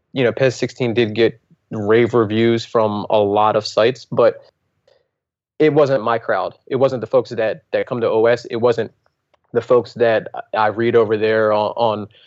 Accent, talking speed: American, 180 wpm